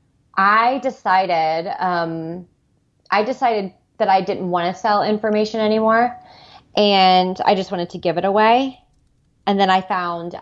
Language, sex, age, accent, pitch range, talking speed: English, female, 20-39, American, 170-200 Hz, 145 wpm